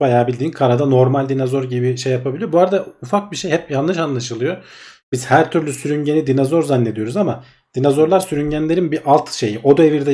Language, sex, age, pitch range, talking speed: Turkish, male, 40-59, 125-155 Hz, 180 wpm